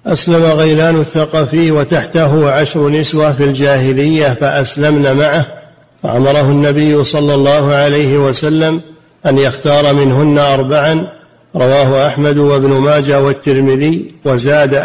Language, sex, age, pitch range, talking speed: Arabic, male, 50-69, 140-150 Hz, 105 wpm